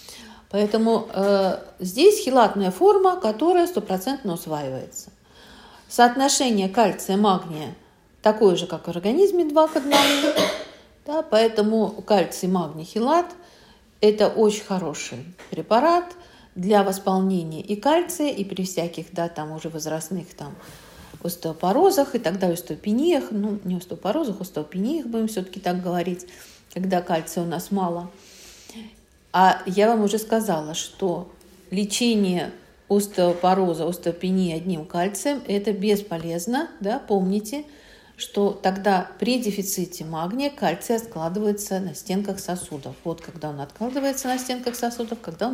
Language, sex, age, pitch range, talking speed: Russian, female, 50-69, 175-235 Hz, 120 wpm